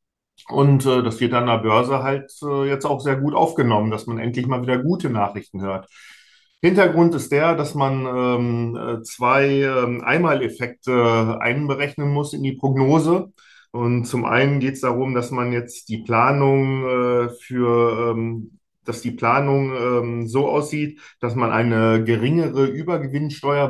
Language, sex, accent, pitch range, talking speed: German, male, German, 120-140 Hz, 155 wpm